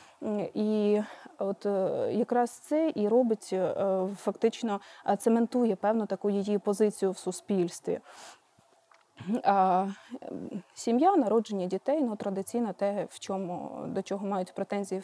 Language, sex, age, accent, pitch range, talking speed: Ukrainian, female, 20-39, native, 195-235 Hz, 110 wpm